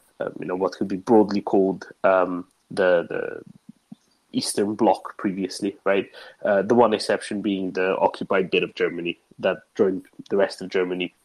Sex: male